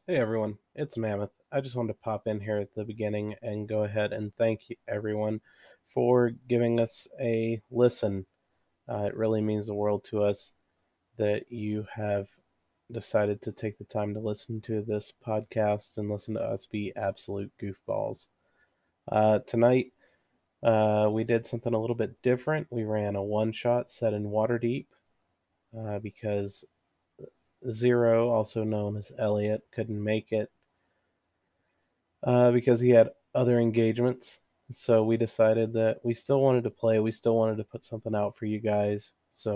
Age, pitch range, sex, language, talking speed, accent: 30-49, 105-115 Hz, male, English, 160 wpm, American